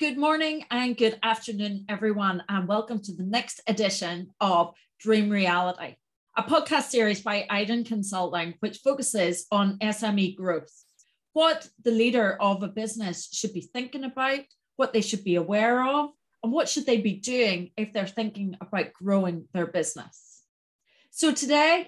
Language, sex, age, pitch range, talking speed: English, female, 30-49, 200-270 Hz, 155 wpm